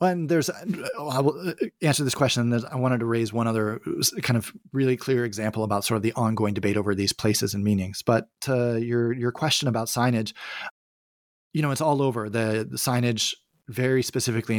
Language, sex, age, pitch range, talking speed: English, male, 30-49, 100-120 Hz, 190 wpm